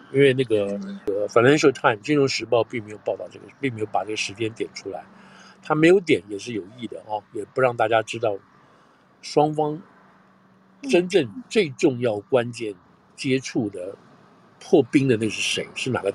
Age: 50-69